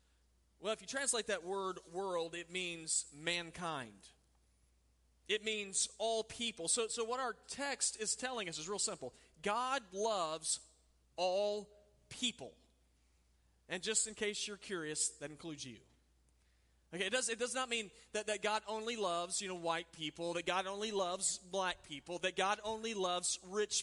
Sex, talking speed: male, 165 wpm